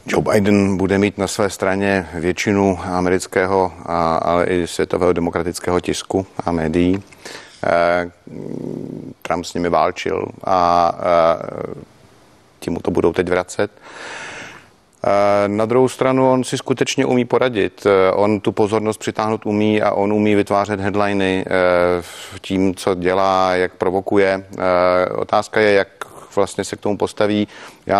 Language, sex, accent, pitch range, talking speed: Czech, male, native, 90-105 Hz, 125 wpm